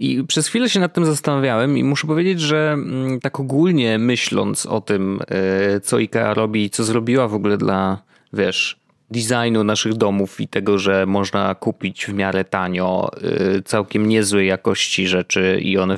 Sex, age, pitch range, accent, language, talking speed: male, 20-39, 100-125 Hz, native, Polish, 160 wpm